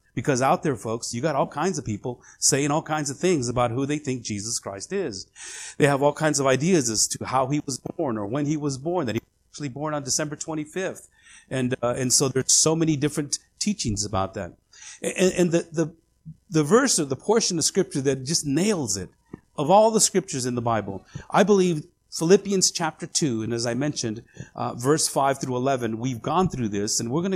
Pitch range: 120-165 Hz